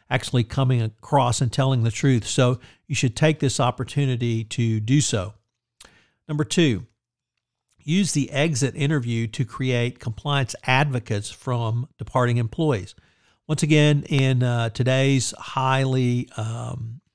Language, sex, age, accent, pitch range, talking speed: English, male, 50-69, American, 120-140 Hz, 125 wpm